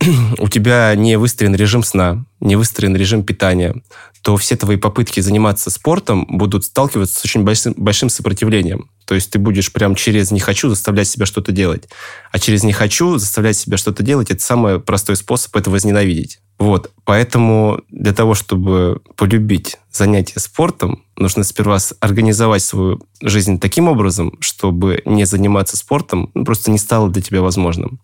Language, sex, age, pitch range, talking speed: Russian, male, 20-39, 95-110 Hz, 160 wpm